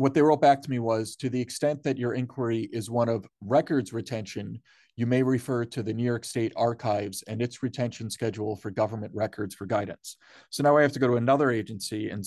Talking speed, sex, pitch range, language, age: 225 wpm, male, 110-125 Hz, English, 40-59